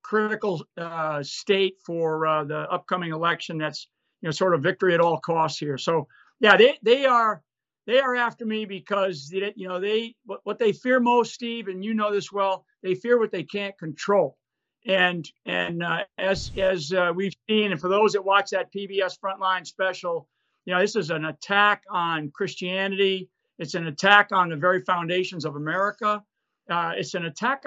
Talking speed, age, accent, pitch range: 185 wpm, 50-69, American, 170-210 Hz